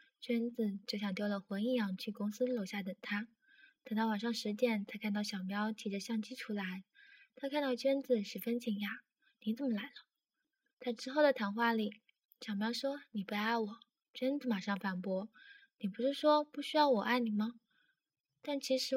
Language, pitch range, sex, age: Chinese, 215-265 Hz, female, 10-29